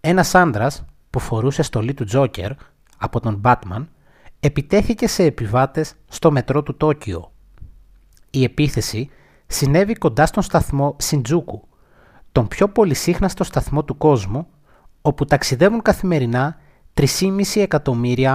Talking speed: 115 wpm